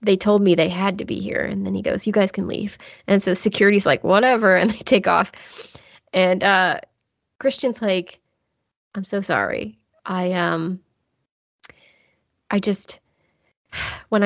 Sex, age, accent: female, 20-39, American